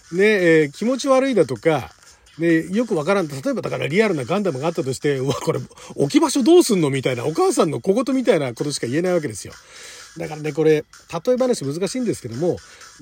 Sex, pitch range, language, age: male, 155-245 Hz, Japanese, 40-59